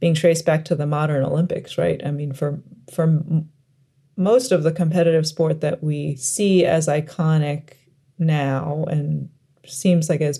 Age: 30-49